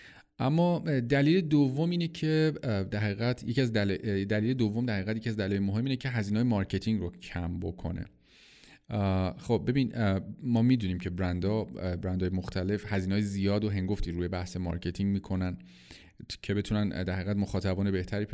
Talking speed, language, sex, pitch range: 145 wpm, Persian, male, 90-115 Hz